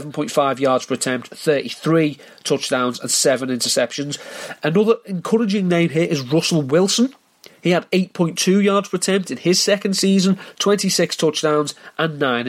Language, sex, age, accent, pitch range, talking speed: English, male, 30-49, British, 145-185 Hz, 140 wpm